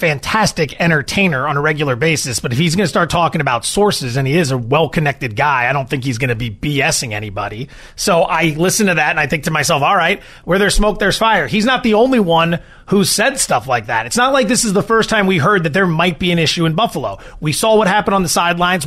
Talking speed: 265 wpm